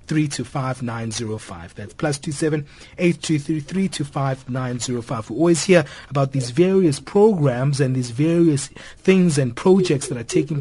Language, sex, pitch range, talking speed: English, male, 130-155 Hz, 100 wpm